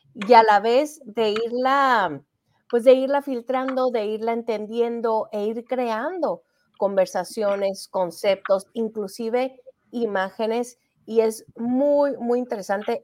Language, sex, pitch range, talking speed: Spanish, female, 205-260 Hz, 115 wpm